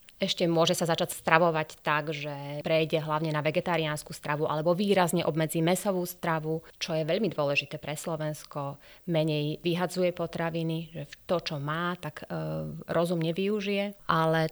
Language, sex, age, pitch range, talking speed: Slovak, female, 30-49, 155-180 Hz, 145 wpm